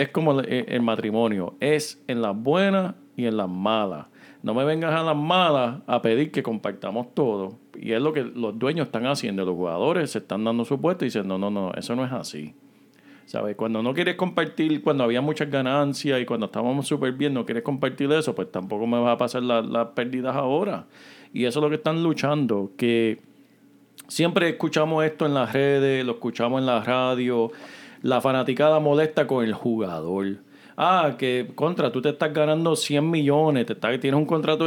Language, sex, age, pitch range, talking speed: Spanish, male, 40-59, 115-150 Hz, 190 wpm